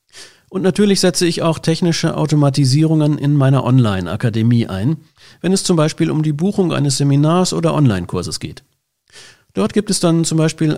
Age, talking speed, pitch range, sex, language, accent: 50-69, 160 wpm, 135-175 Hz, male, German, German